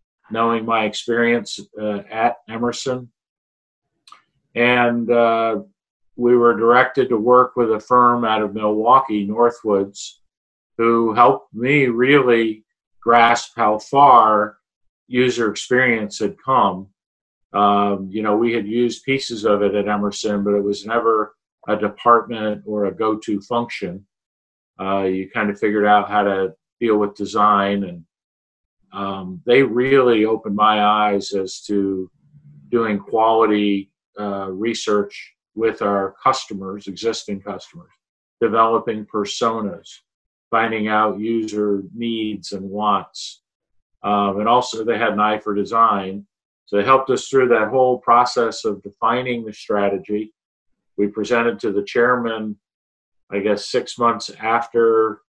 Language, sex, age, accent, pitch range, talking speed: English, male, 50-69, American, 100-115 Hz, 130 wpm